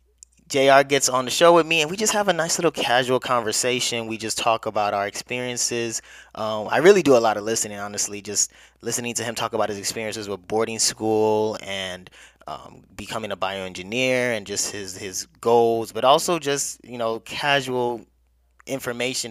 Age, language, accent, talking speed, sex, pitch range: 20-39, English, American, 185 wpm, male, 105-125 Hz